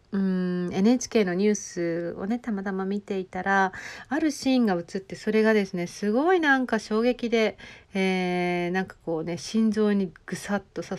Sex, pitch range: female, 170-240 Hz